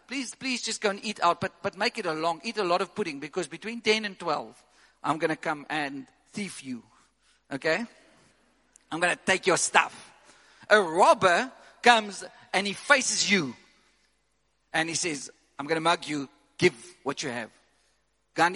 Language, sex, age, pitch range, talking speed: English, male, 50-69, 155-205 Hz, 185 wpm